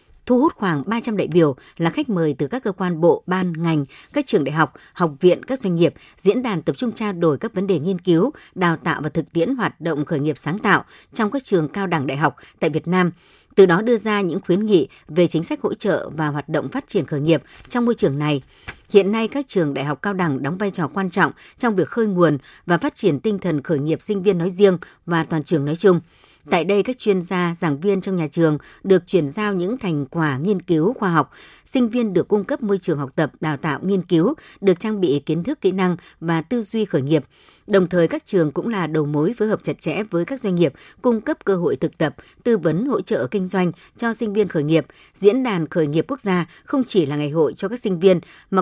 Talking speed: 255 wpm